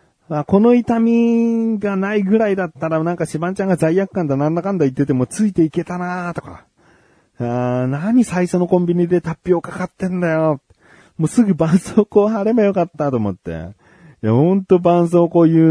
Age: 30-49